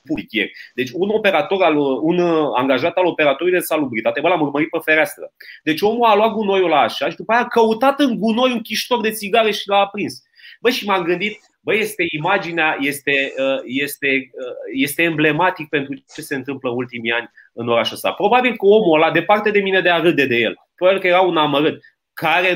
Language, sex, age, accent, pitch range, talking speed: Romanian, male, 30-49, native, 155-225 Hz, 195 wpm